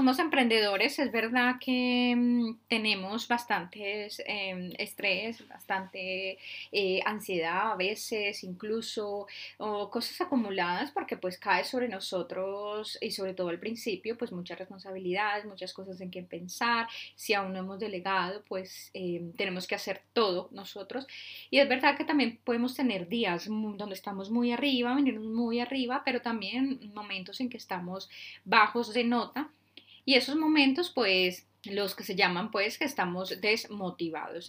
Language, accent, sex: Spanish, Colombian, female